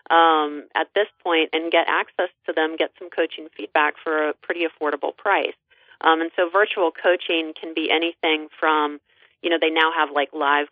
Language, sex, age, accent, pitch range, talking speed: English, female, 30-49, American, 145-165 Hz, 190 wpm